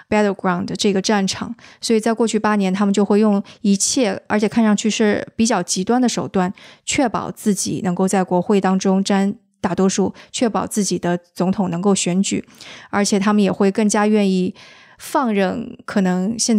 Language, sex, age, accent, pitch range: Chinese, female, 20-39, native, 195-225 Hz